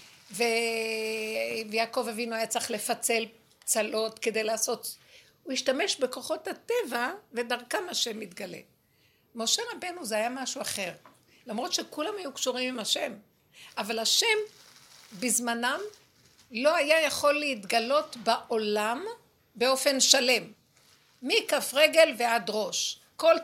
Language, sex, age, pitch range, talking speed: Hebrew, female, 60-79, 230-295 Hz, 110 wpm